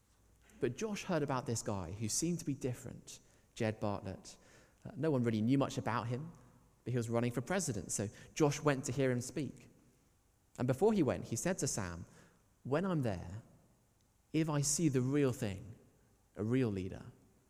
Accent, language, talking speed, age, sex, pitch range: British, English, 180 wpm, 20-39, male, 100-140 Hz